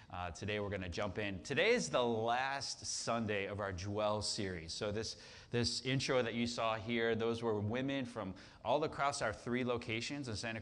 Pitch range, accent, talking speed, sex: 95-120 Hz, American, 200 wpm, male